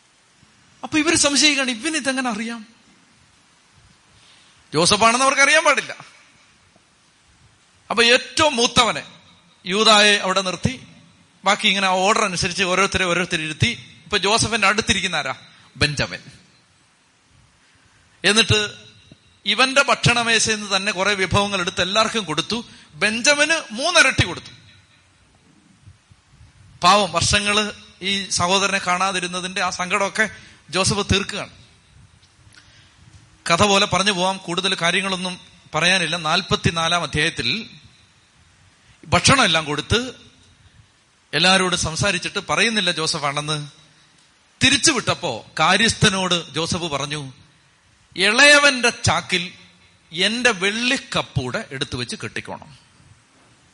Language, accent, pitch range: Malayalam, native, 150-210 Hz